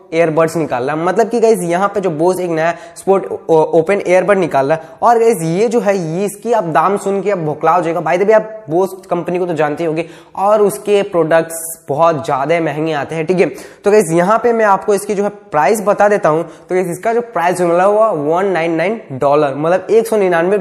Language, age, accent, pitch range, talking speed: Hindi, 20-39, native, 160-200 Hz, 95 wpm